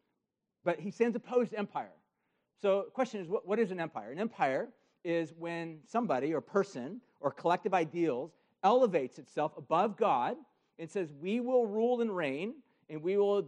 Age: 50-69